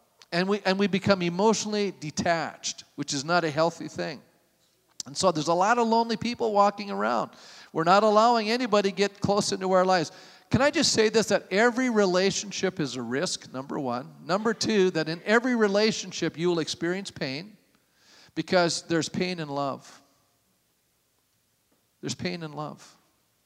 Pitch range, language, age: 160-210 Hz, English, 40-59